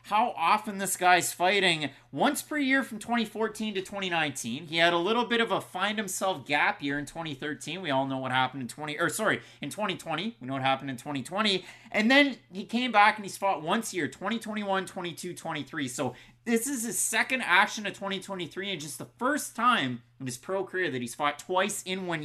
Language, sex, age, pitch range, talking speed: English, male, 30-49, 145-210 Hz, 215 wpm